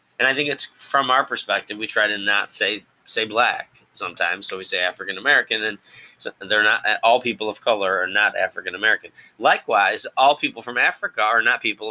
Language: English